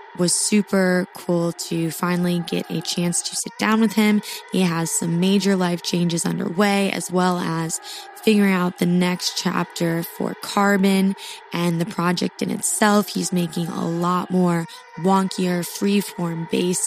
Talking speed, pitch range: 150 wpm, 175-195 Hz